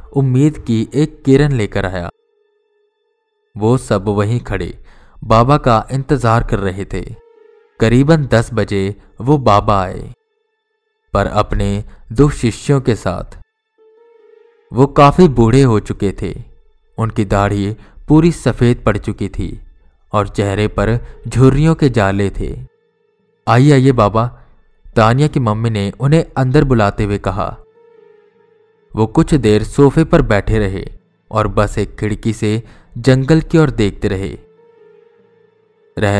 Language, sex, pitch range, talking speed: Hindi, male, 100-150 Hz, 130 wpm